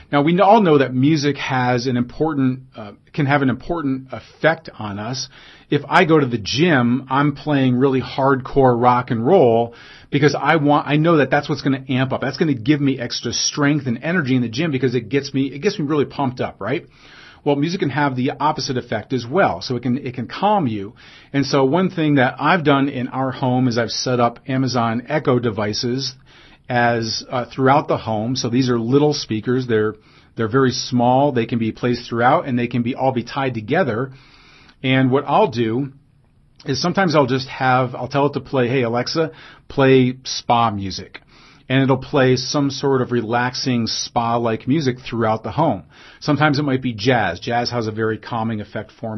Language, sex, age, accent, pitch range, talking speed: English, male, 40-59, American, 120-145 Hz, 205 wpm